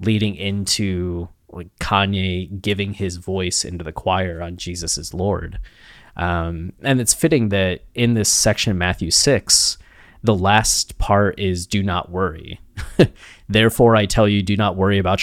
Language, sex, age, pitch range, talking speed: English, male, 20-39, 90-105 Hz, 155 wpm